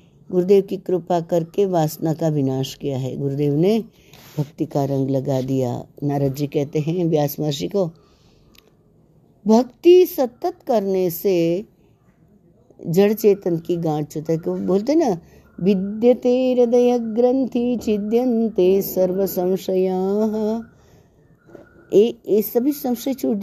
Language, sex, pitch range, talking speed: Hindi, female, 160-205 Hz, 115 wpm